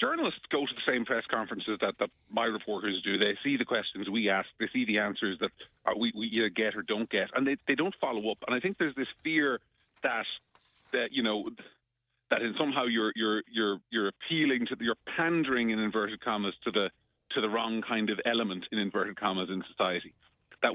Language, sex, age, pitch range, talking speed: English, male, 40-59, 105-150 Hz, 215 wpm